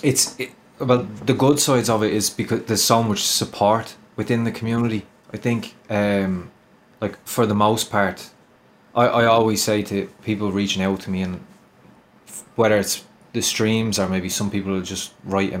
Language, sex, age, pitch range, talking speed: English, male, 20-39, 95-115 Hz, 190 wpm